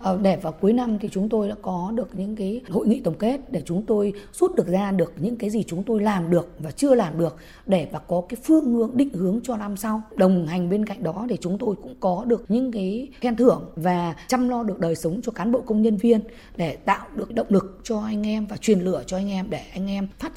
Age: 20-39